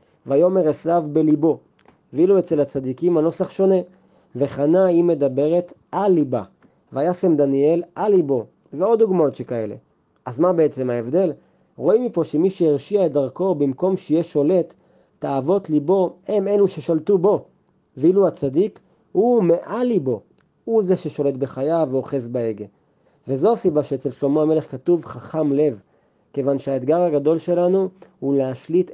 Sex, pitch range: male, 140-180 Hz